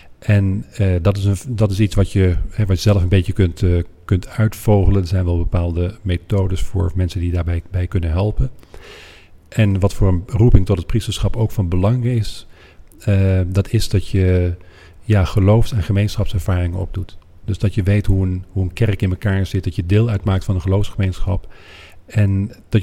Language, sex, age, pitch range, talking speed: Dutch, male, 40-59, 90-105 Hz, 195 wpm